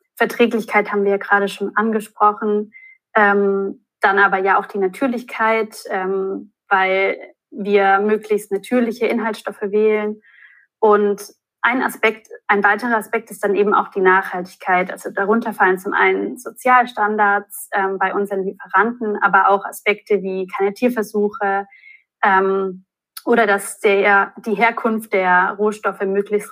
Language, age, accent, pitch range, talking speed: German, 20-39, German, 195-225 Hz, 130 wpm